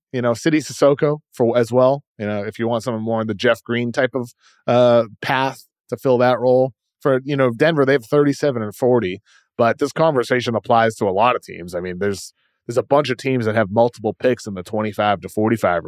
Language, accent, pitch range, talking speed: English, American, 110-135 Hz, 230 wpm